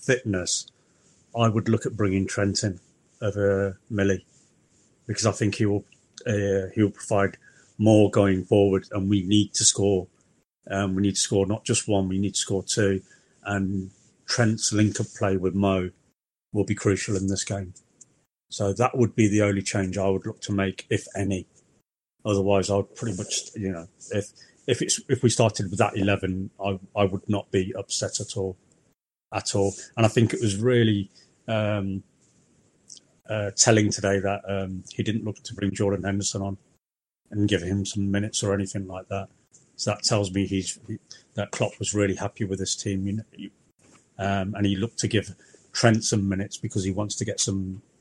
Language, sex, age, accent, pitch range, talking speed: English, male, 40-59, British, 95-105 Hz, 190 wpm